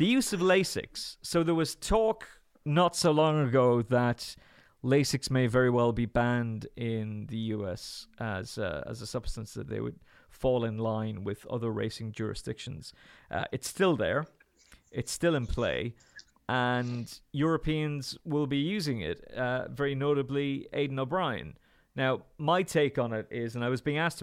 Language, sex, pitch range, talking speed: English, male, 120-145 Hz, 165 wpm